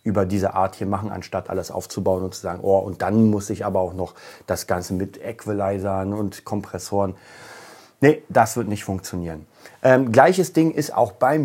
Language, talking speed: German, 190 wpm